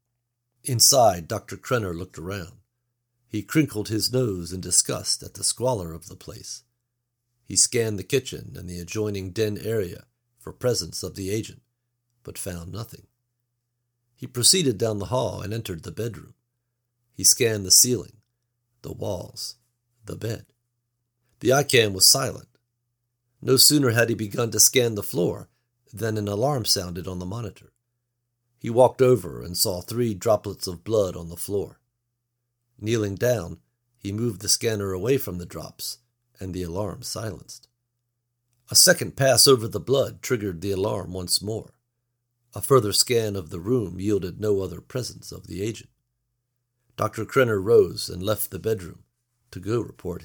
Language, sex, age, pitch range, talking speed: English, male, 50-69, 100-120 Hz, 155 wpm